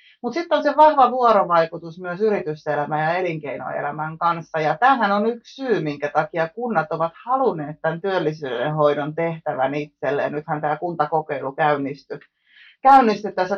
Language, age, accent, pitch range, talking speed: Finnish, 30-49, native, 155-205 Hz, 135 wpm